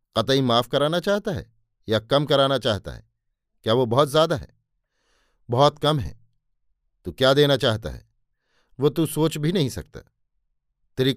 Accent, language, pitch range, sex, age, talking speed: native, Hindi, 115-150 Hz, male, 50-69, 160 wpm